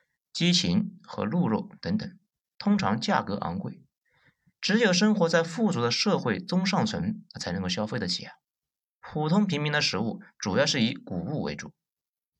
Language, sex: Chinese, male